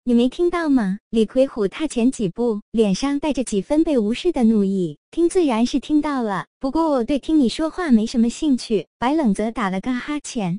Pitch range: 215-305 Hz